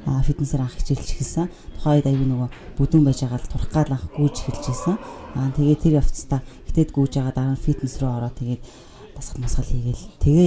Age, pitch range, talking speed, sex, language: 30-49, 125-150 Hz, 165 wpm, female, English